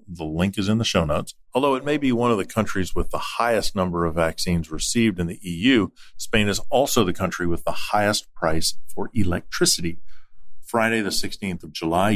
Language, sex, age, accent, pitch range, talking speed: English, male, 50-69, American, 85-110 Hz, 200 wpm